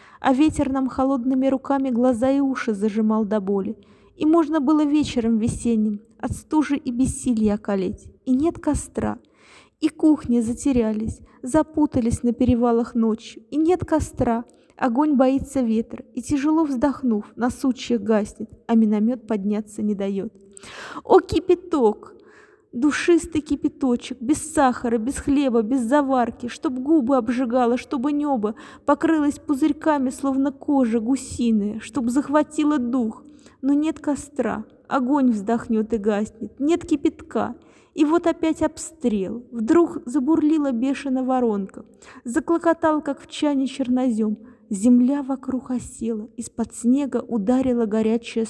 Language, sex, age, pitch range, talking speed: Russian, female, 20-39, 230-295 Hz, 120 wpm